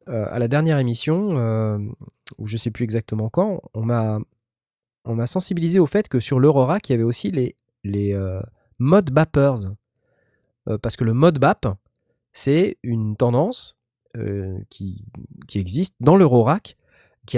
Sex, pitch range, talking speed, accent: male, 105-140 Hz, 160 wpm, French